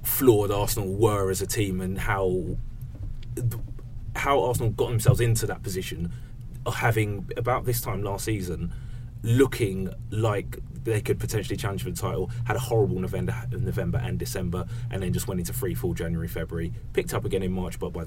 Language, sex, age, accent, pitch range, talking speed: English, male, 30-49, British, 95-120 Hz, 175 wpm